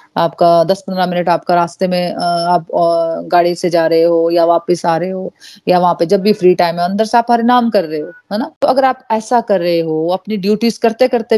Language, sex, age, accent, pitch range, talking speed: Hindi, female, 30-49, native, 180-235 Hz, 245 wpm